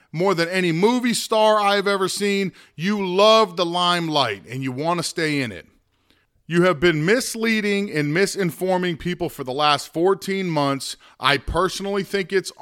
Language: English